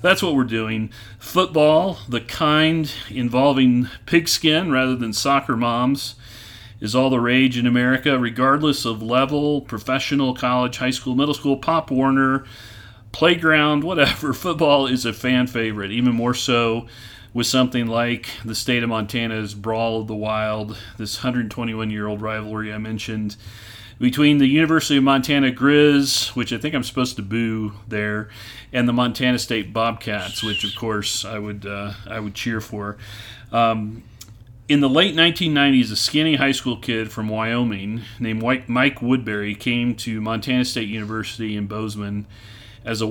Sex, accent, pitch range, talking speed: male, American, 110-130 Hz, 155 wpm